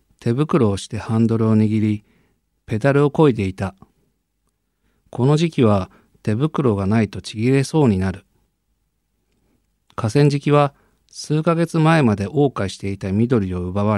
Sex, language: male, Japanese